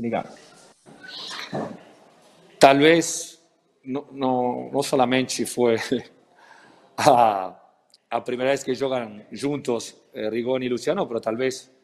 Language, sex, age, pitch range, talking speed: Portuguese, male, 40-59, 110-130 Hz, 100 wpm